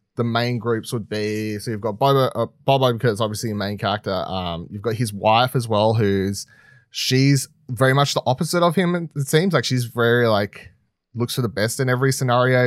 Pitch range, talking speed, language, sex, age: 105-130 Hz, 210 wpm, English, male, 20-39